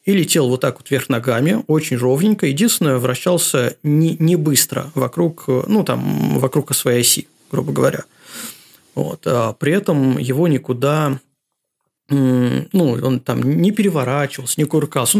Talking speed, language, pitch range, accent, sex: 140 wpm, Russian, 125-160 Hz, native, male